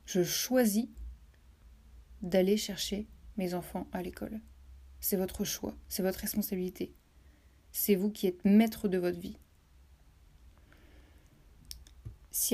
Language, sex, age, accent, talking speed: French, female, 30-49, French, 110 wpm